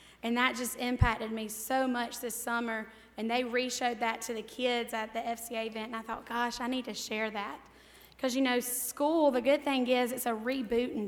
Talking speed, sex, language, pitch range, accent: 215 wpm, female, English, 230-255 Hz, American